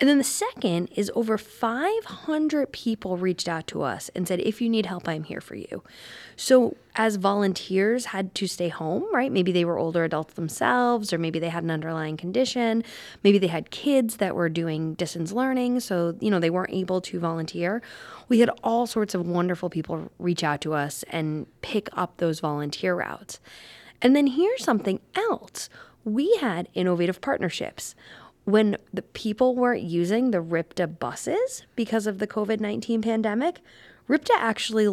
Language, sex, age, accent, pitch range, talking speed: English, female, 20-39, American, 175-245 Hz, 175 wpm